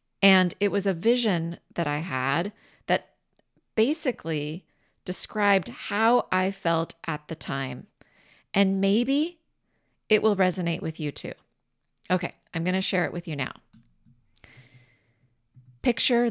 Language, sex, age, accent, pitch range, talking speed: English, female, 30-49, American, 165-215 Hz, 130 wpm